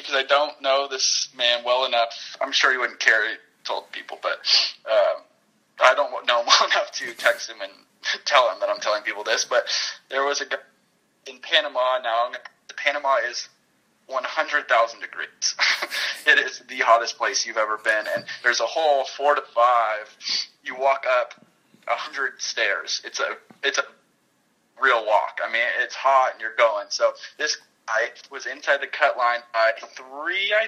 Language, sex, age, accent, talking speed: English, male, 20-39, American, 180 wpm